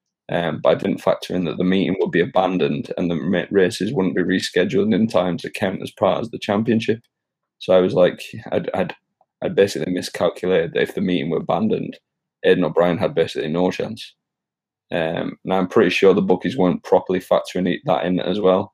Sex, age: male, 20-39